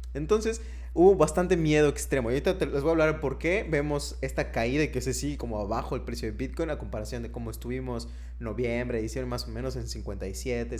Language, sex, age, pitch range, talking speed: Spanish, male, 20-39, 95-150 Hz, 215 wpm